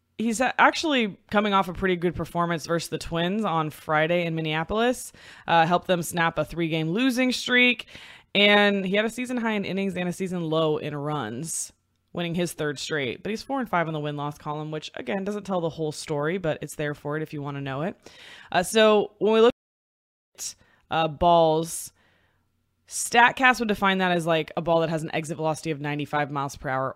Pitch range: 155-200 Hz